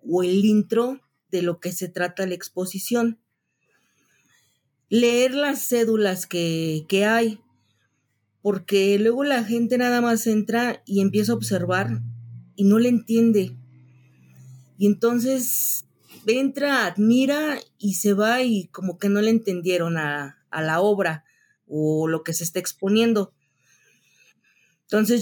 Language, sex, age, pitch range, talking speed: Spanish, female, 40-59, 165-225 Hz, 130 wpm